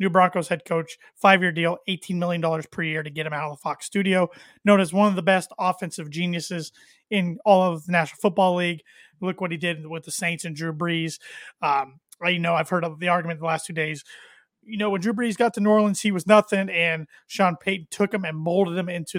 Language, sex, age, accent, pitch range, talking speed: English, male, 30-49, American, 165-205 Hz, 240 wpm